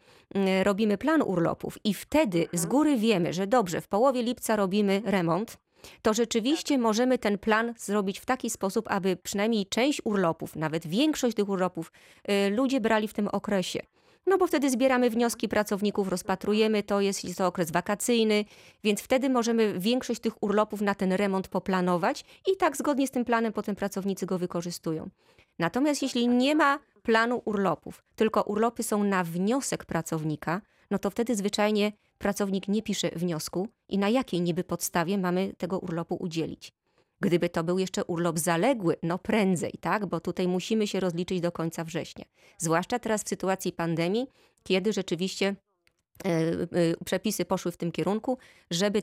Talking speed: 155 wpm